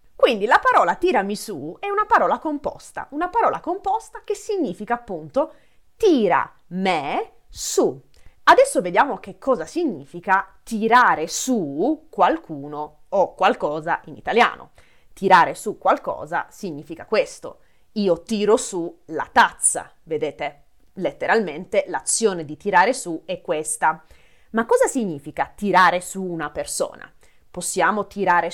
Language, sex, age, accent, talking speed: Italian, female, 30-49, native, 120 wpm